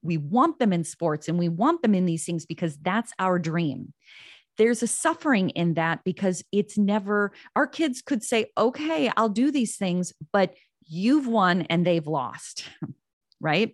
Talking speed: 175 wpm